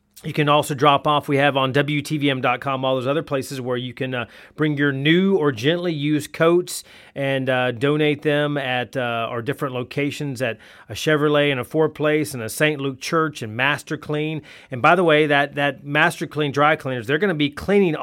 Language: English